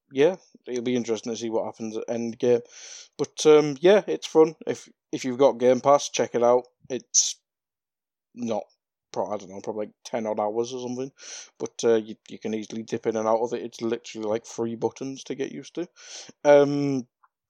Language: English